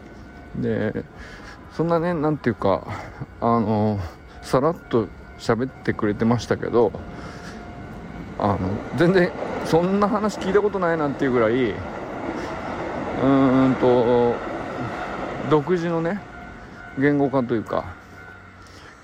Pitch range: 95-135 Hz